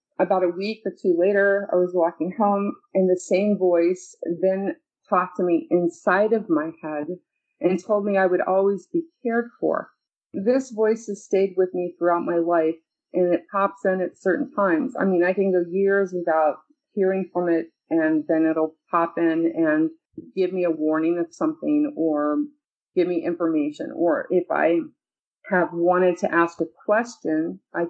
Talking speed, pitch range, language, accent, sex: 180 wpm, 165-200 Hz, English, American, female